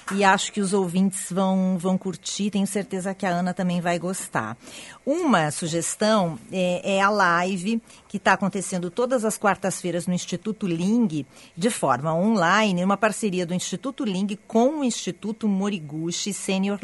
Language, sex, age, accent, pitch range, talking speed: Portuguese, female, 40-59, Brazilian, 175-215 Hz, 155 wpm